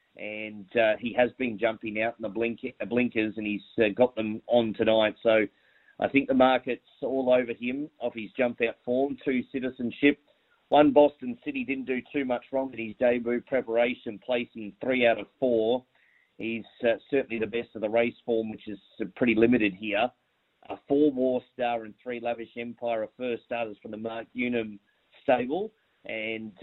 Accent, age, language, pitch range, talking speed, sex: Australian, 30-49, English, 115-130 Hz, 180 wpm, male